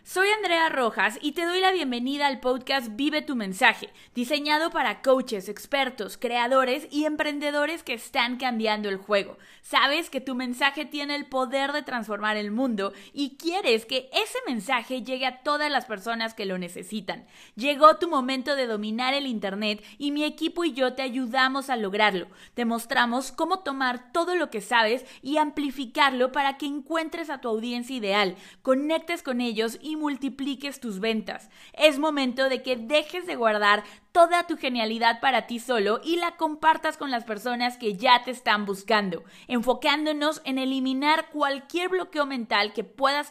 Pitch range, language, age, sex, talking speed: 230-295 Hz, Spanish, 20-39, female, 170 wpm